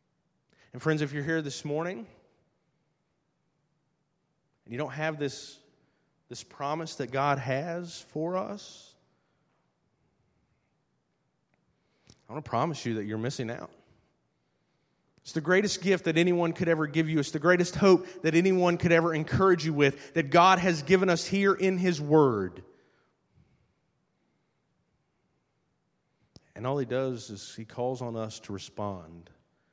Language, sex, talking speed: English, male, 140 wpm